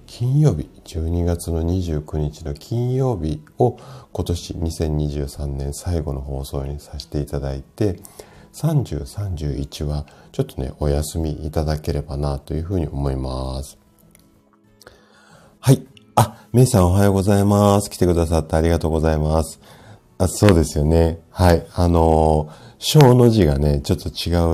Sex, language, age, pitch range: male, Japanese, 50-69, 75-100 Hz